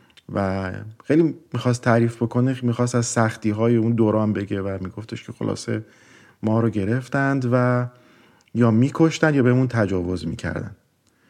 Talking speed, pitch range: 140 wpm, 95-120 Hz